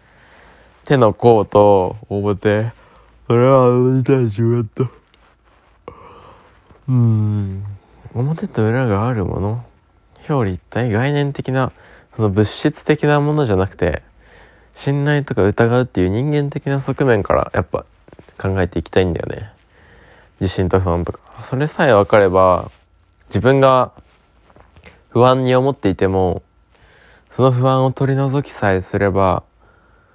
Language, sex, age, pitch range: Japanese, male, 20-39, 95-130 Hz